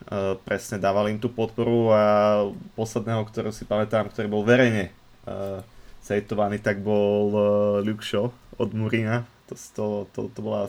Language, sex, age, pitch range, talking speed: Slovak, male, 20-39, 95-110 Hz, 140 wpm